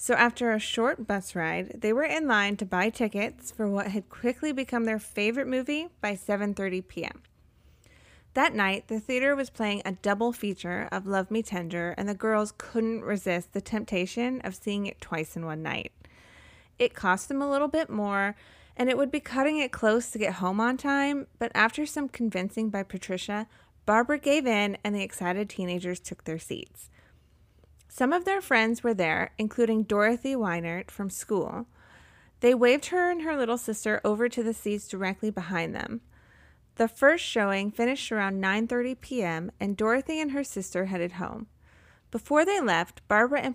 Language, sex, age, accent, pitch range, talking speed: English, female, 20-39, American, 190-245 Hz, 180 wpm